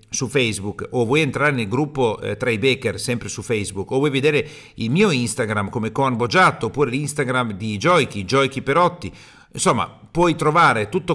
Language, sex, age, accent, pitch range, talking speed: Italian, male, 50-69, native, 115-175 Hz, 180 wpm